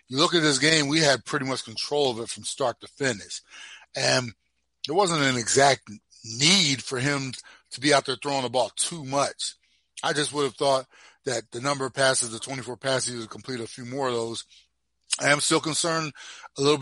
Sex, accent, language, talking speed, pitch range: male, American, English, 215 wpm, 125-150 Hz